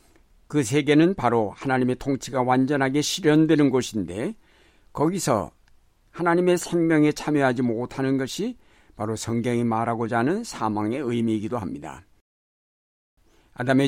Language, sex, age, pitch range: Korean, male, 60-79, 120-150 Hz